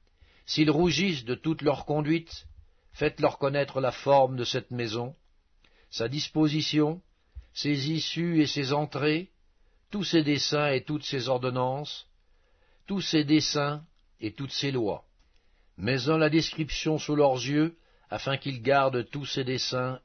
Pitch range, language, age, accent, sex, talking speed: 110-150 Hz, French, 60-79, French, male, 140 wpm